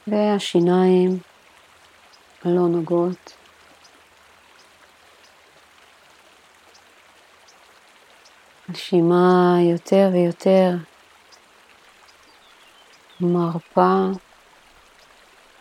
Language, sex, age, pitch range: Hebrew, female, 50-69, 175-190 Hz